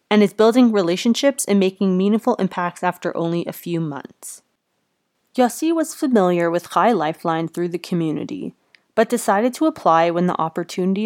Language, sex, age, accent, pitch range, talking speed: English, female, 20-39, American, 175-220 Hz, 155 wpm